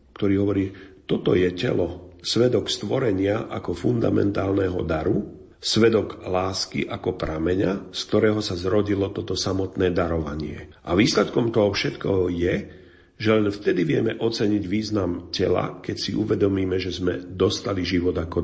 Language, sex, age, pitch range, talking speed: Slovak, male, 40-59, 90-105 Hz, 135 wpm